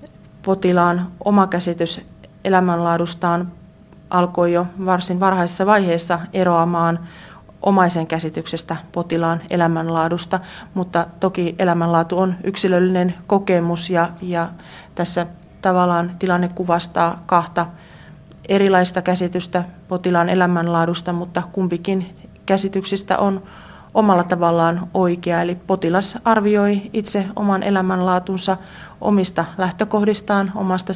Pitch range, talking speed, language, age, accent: 170-190 Hz, 90 wpm, Finnish, 30-49, native